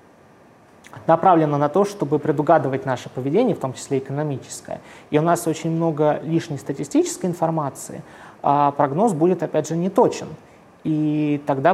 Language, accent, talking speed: Russian, native, 140 wpm